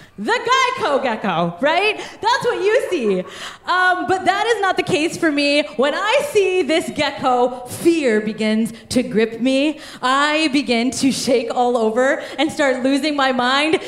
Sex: female